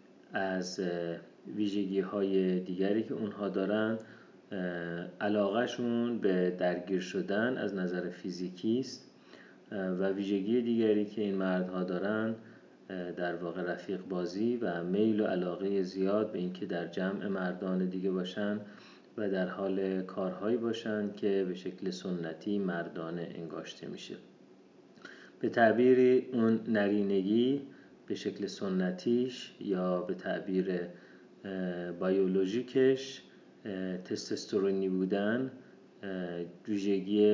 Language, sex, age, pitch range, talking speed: Persian, male, 30-49, 90-105 Hz, 100 wpm